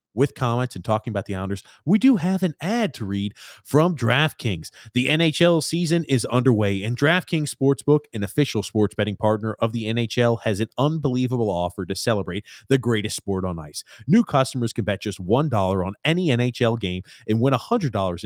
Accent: American